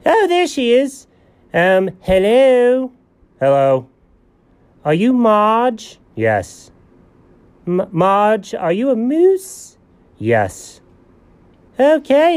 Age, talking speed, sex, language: 30-49, 85 wpm, male, English